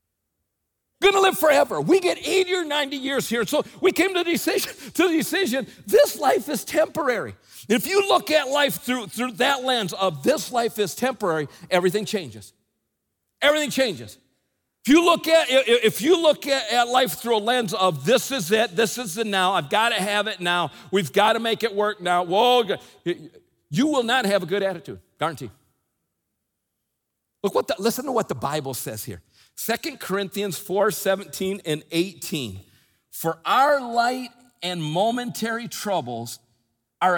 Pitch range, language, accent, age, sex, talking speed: 170-285 Hz, English, American, 50-69, male, 170 wpm